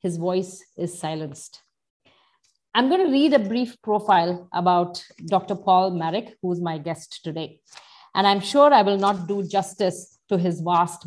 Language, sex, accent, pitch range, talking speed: English, female, Indian, 175-230 Hz, 155 wpm